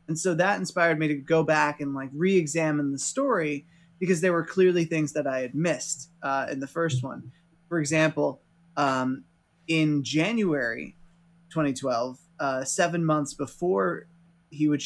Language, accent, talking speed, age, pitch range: English, American, 160 wpm, 20-39, 140-170 Hz